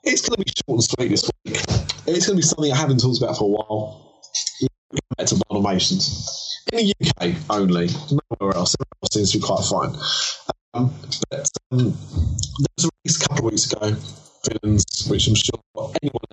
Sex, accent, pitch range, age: male, British, 105-135 Hz, 20-39